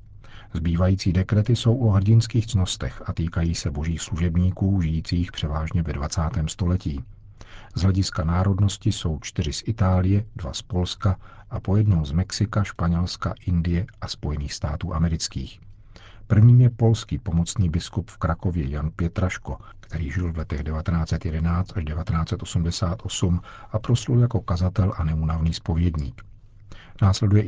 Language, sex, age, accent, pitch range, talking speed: Czech, male, 50-69, native, 85-105 Hz, 130 wpm